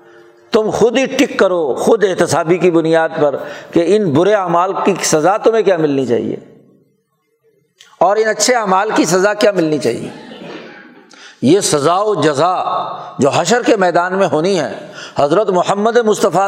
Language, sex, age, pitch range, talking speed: Urdu, male, 60-79, 160-215 Hz, 155 wpm